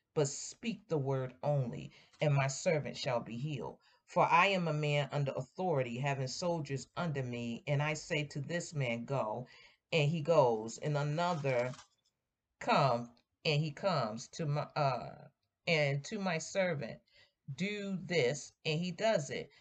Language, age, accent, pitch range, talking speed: English, 40-59, American, 135-175 Hz, 155 wpm